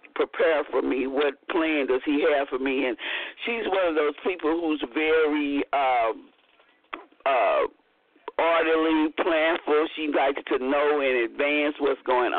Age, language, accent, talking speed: 50-69, English, American, 145 wpm